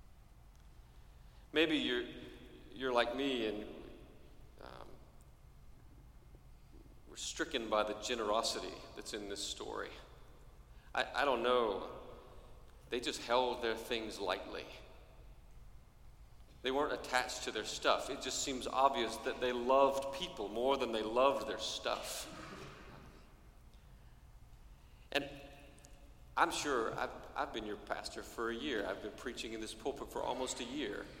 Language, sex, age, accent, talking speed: English, male, 40-59, American, 130 wpm